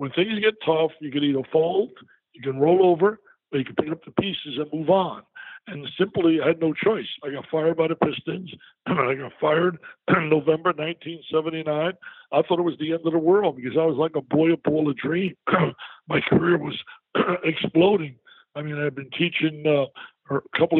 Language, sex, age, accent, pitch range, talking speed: English, male, 60-79, American, 155-180 Hz, 215 wpm